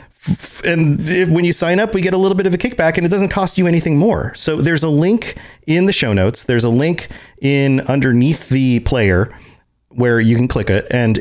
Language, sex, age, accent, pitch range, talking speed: English, male, 30-49, American, 105-140 Hz, 225 wpm